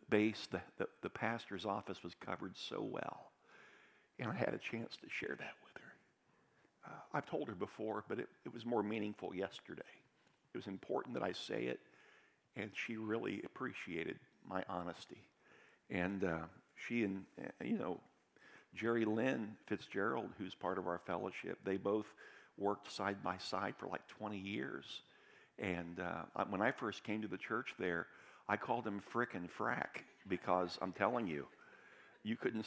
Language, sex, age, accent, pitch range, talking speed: English, male, 50-69, American, 95-110 Hz, 165 wpm